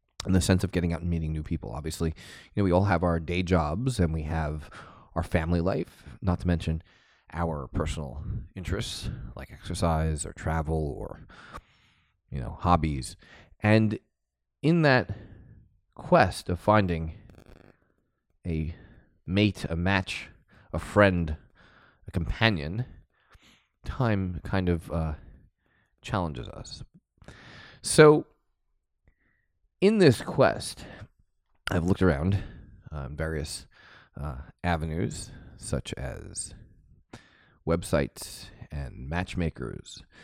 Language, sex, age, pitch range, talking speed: English, male, 30-49, 80-100 Hz, 110 wpm